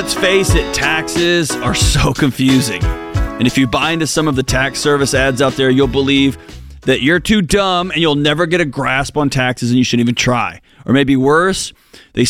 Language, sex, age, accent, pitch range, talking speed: English, male, 30-49, American, 130-190 Hz, 210 wpm